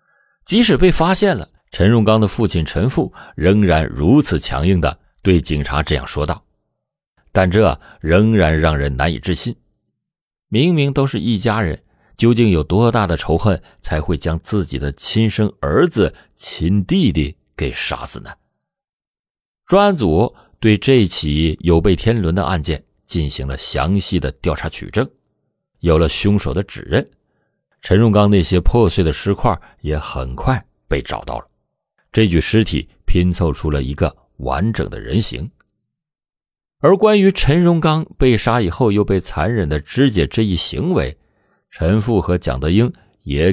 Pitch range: 80-110 Hz